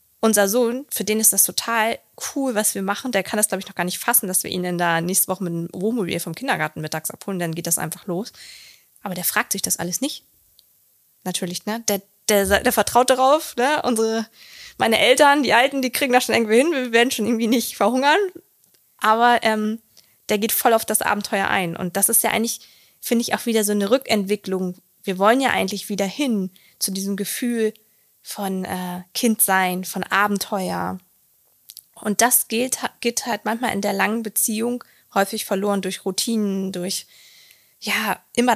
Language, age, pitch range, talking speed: German, 20-39, 185-230 Hz, 195 wpm